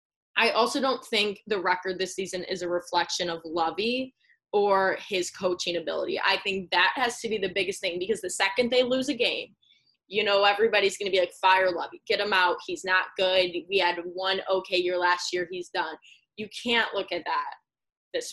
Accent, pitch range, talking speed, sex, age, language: American, 185-255 Hz, 205 wpm, female, 10-29, English